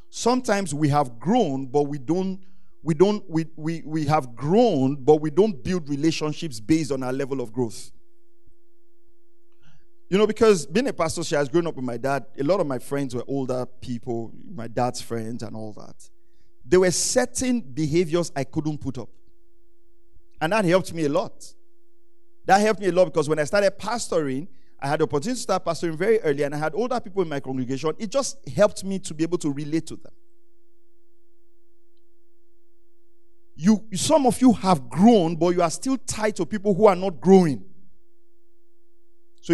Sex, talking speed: male, 185 wpm